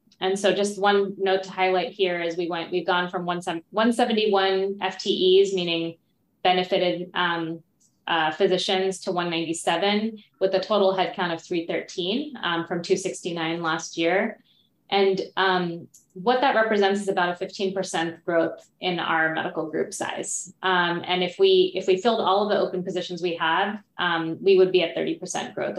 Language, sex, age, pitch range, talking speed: English, female, 20-39, 175-200 Hz, 165 wpm